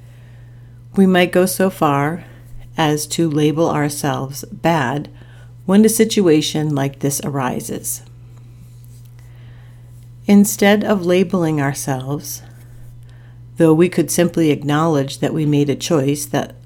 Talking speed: 110 wpm